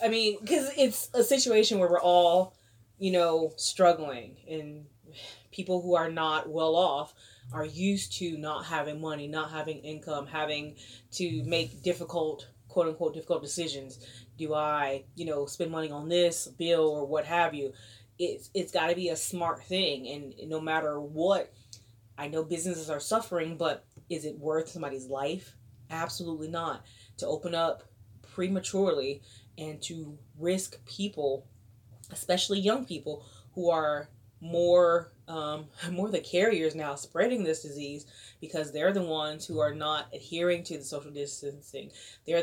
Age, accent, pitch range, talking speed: 20-39, American, 140-170 Hz, 155 wpm